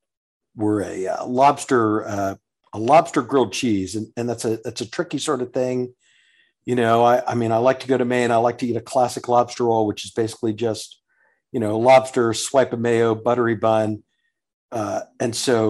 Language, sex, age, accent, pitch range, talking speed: English, male, 50-69, American, 110-130 Hz, 205 wpm